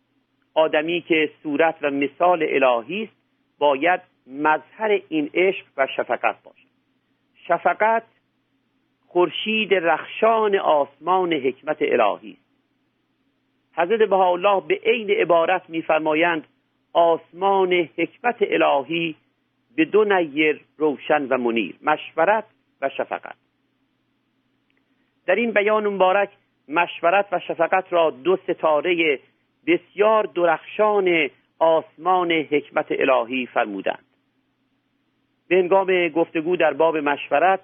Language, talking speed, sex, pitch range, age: Persian, 95 wpm, male, 155-190 Hz, 50-69